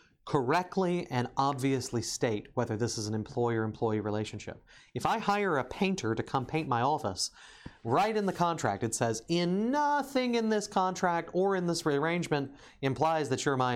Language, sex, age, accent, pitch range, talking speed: English, male, 30-49, American, 115-165 Hz, 175 wpm